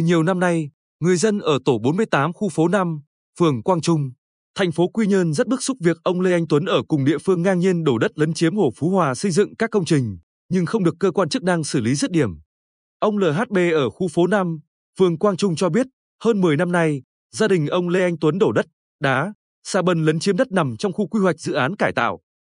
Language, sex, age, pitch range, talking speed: Vietnamese, male, 20-39, 150-200 Hz, 245 wpm